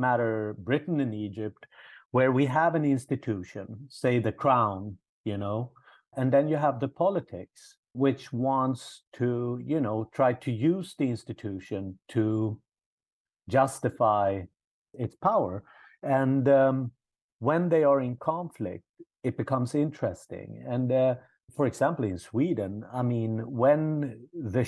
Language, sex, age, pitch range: English, male, 50-69, 110-140 Hz